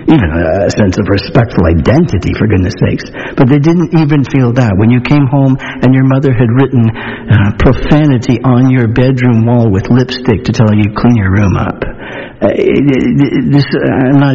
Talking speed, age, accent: 195 wpm, 60-79, American